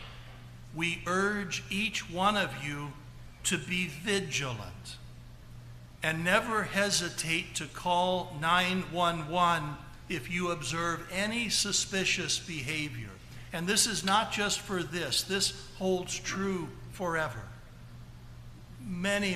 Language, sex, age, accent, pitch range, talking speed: English, male, 60-79, American, 120-175 Hz, 100 wpm